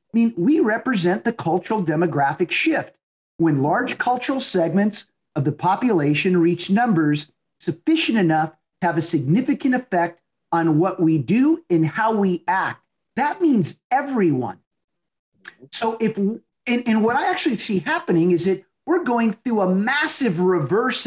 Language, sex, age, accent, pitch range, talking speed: English, male, 50-69, American, 170-240 Hz, 150 wpm